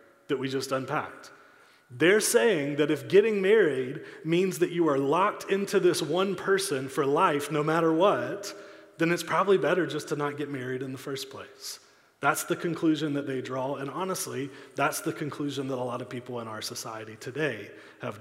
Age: 30-49